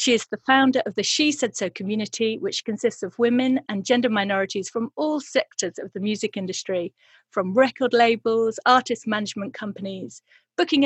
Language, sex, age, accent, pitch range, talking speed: English, female, 40-59, British, 200-250 Hz, 170 wpm